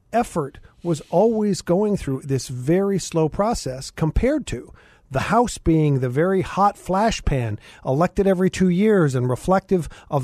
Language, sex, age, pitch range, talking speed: English, male, 50-69, 135-185 Hz, 150 wpm